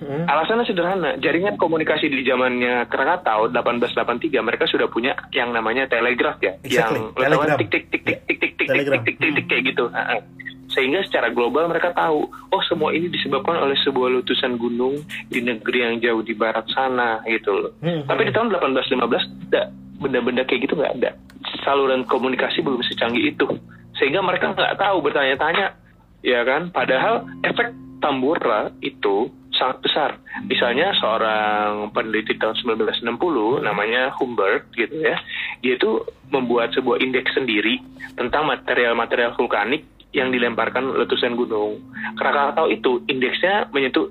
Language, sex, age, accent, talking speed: Indonesian, male, 30-49, native, 140 wpm